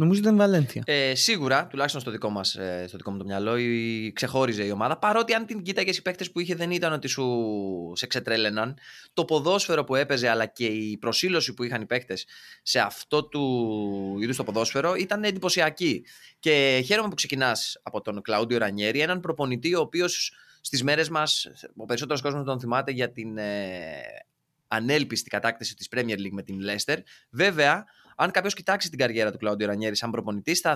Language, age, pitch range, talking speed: Greek, 20-39, 115-175 Hz, 175 wpm